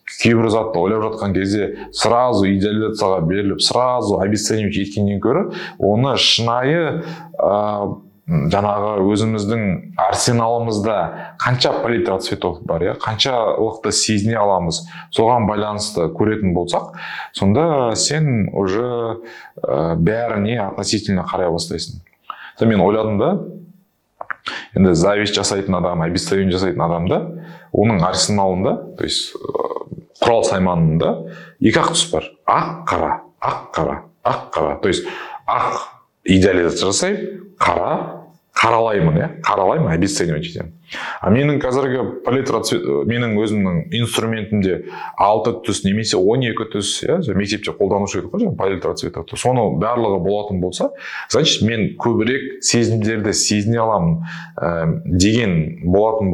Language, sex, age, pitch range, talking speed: Russian, male, 20-39, 95-120 Hz, 60 wpm